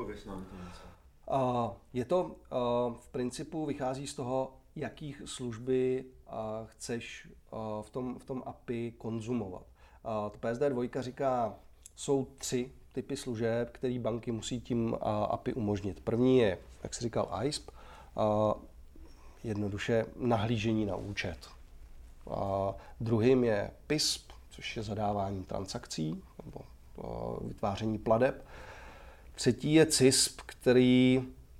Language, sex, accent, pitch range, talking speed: Czech, male, native, 105-125 Hz, 100 wpm